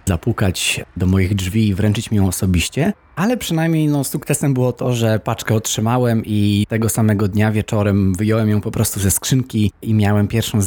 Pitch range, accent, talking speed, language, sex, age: 100-120 Hz, native, 180 wpm, Polish, male, 20-39